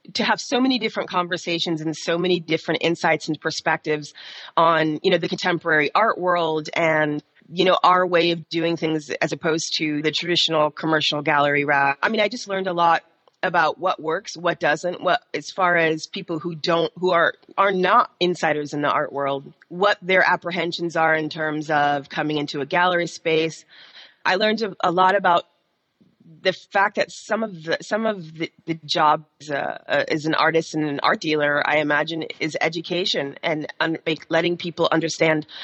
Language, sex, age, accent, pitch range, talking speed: English, female, 30-49, American, 150-180 Hz, 185 wpm